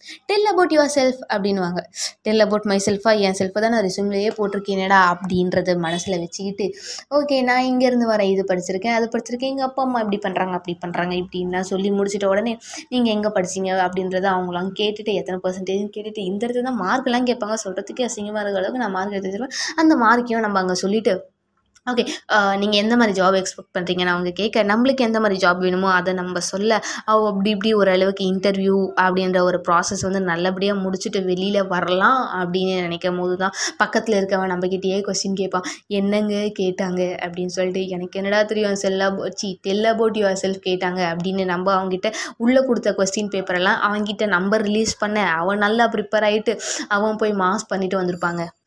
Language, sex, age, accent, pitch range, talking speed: Tamil, female, 20-39, native, 185-215 Hz, 165 wpm